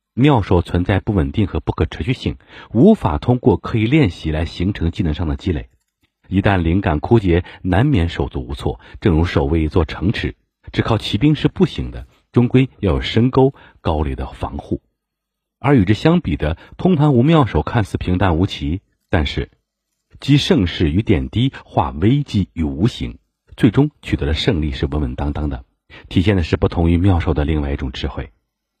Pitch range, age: 75-110 Hz, 50-69